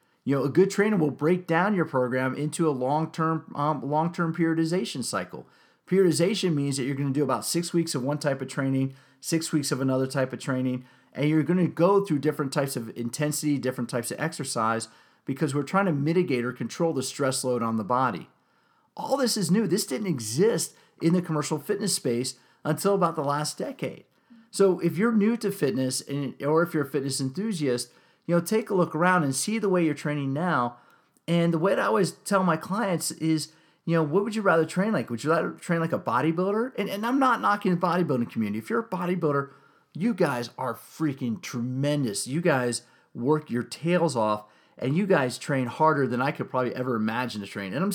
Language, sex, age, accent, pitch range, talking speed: English, male, 40-59, American, 130-175 Hz, 215 wpm